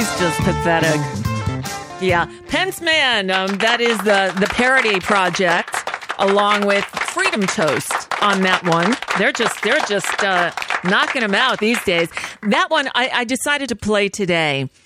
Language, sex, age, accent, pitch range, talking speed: English, female, 40-59, American, 175-240 Hz, 155 wpm